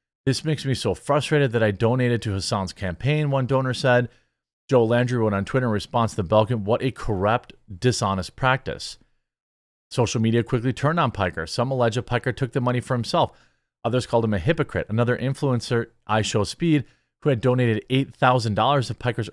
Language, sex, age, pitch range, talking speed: English, male, 40-59, 105-130 Hz, 180 wpm